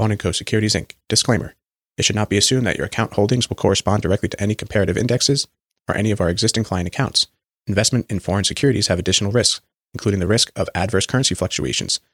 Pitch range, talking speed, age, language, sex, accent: 95-115 Hz, 205 wpm, 30-49, English, male, American